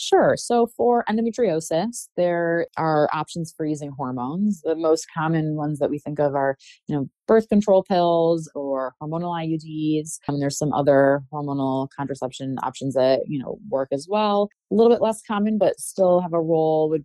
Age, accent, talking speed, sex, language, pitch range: 20-39, American, 185 wpm, female, English, 140-185 Hz